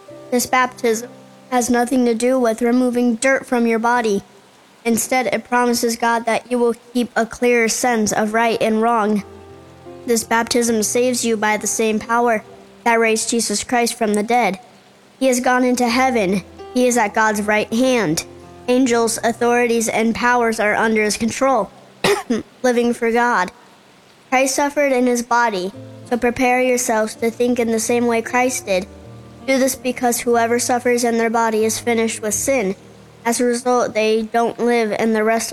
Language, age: English, 20-39